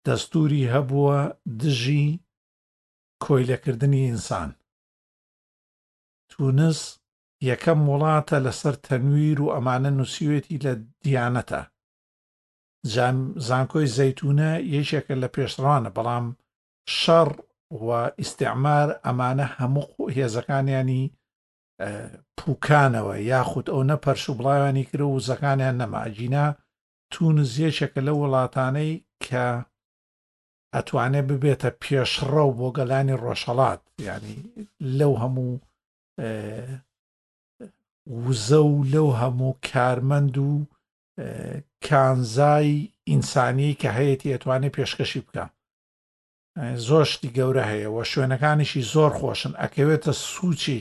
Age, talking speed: 50-69, 100 wpm